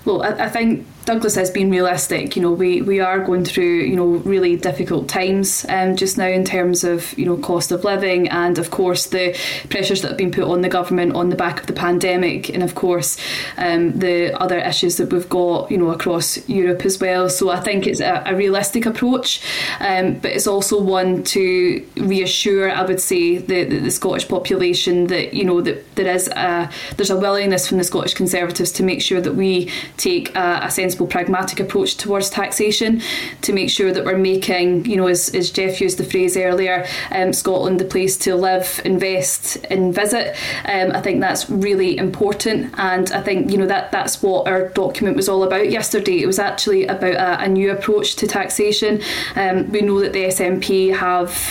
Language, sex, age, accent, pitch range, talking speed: English, female, 10-29, British, 180-195 Hz, 205 wpm